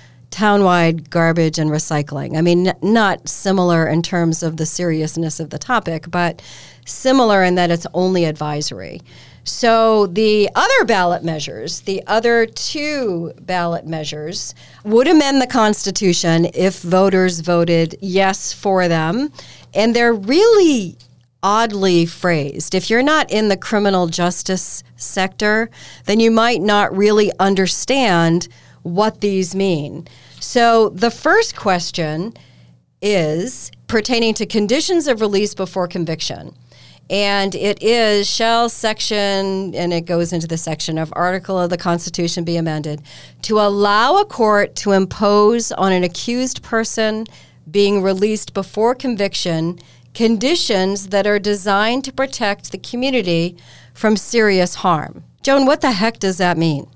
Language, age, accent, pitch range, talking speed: English, 40-59, American, 170-220 Hz, 135 wpm